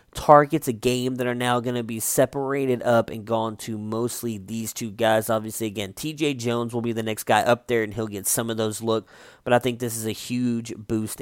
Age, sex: 20-39, male